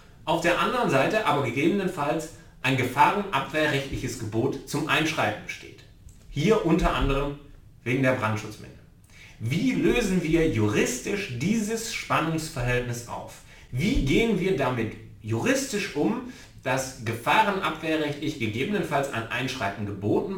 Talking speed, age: 110 wpm, 40-59